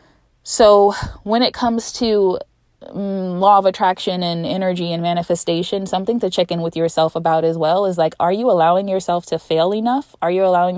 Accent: American